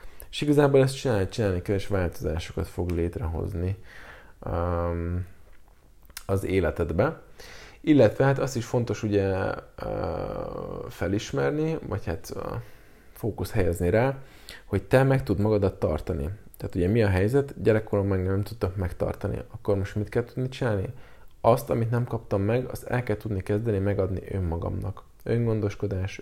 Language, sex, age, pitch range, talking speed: Hungarian, male, 20-39, 95-115 Hz, 135 wpm